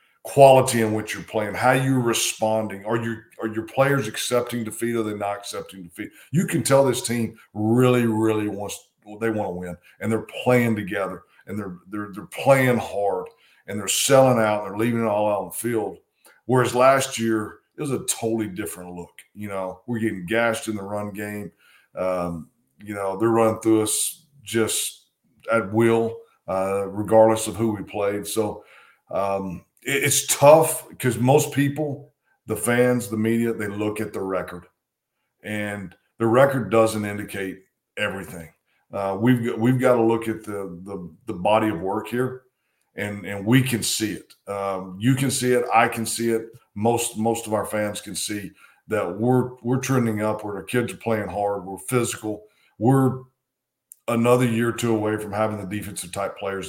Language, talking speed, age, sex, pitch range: English, 185 wpm, 40-59, male, 100-120 Hz